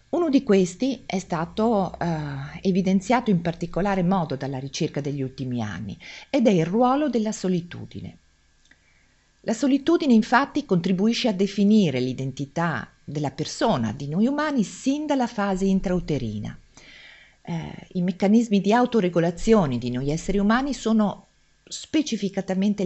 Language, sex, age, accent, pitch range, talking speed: Italian, female, 50-69, native, 140-220 Hz, 125 wpm